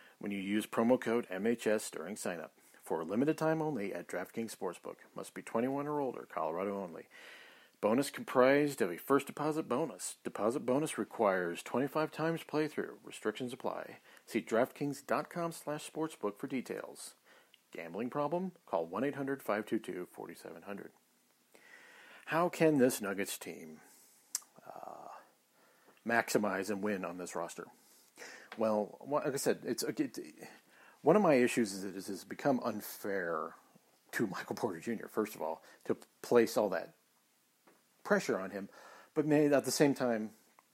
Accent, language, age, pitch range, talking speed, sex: American, English, 40-59, 105-150 Hz, 140 wpm, male